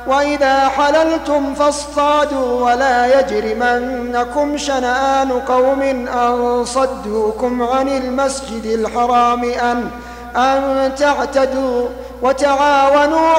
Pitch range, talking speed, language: 245-290 Hz, 70 wpm, Arabic